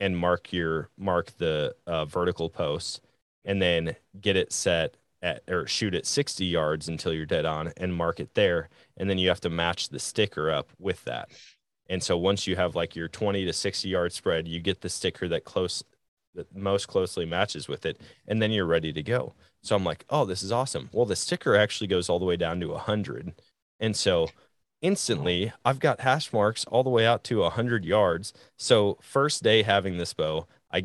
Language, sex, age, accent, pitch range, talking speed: English, male, 20-39, American, 85-105 Hz, 210 wpm